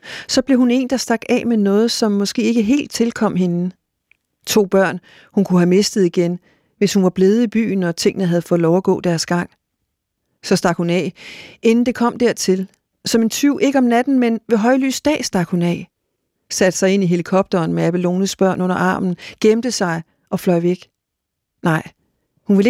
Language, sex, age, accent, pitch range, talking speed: Danish, female, 40-59, native, 185-230 Hz, 200 wpm